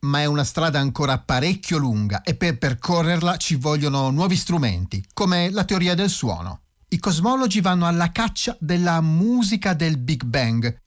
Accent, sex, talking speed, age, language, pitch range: native, male, 160 wpm, 40-59, Italian, 120-165 Hz